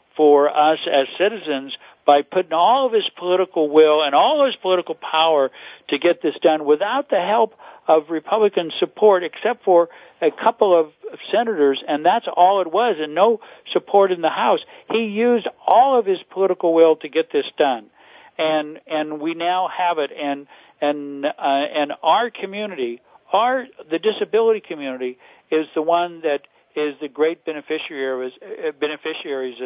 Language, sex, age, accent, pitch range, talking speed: English, male, 60-79, American, 135-180 Hz, 160 wpm